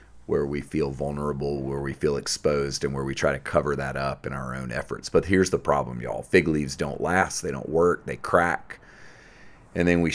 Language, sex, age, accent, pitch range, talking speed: English, male, 30-49, American, 70-85 Hz, 220 wpm